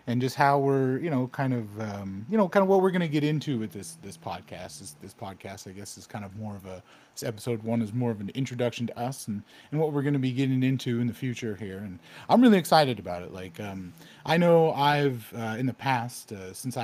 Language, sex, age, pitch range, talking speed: English, male, 30-49, 100-135 Hz, 265 wpm